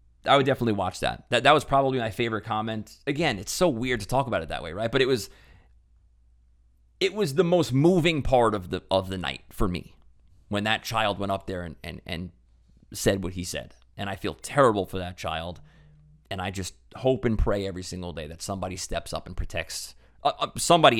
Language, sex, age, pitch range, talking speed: English, male, 30-49, 85-120 Hz, 220 wpm